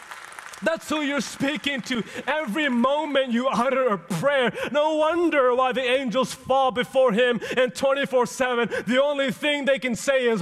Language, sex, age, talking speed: English, male, 30-49, 165 wpm